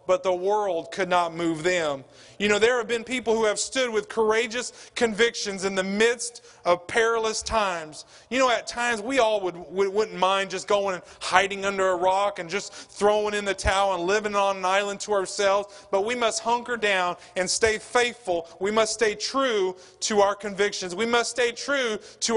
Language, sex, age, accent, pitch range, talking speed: English, male, 30-49, American, 200-245 Hz, 200 wpm